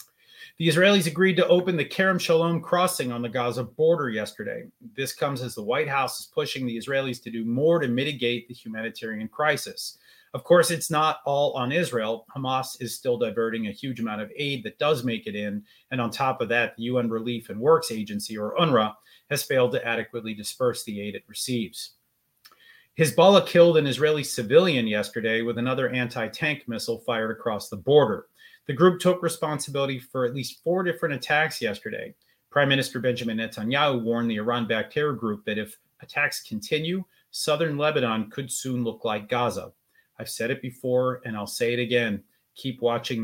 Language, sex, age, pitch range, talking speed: English, male, 30-49, 115-160 Hz, 180 wpm